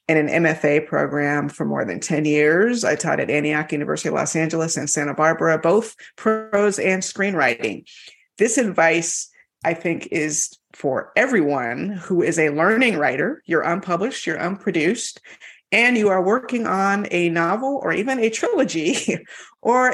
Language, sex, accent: English, female, American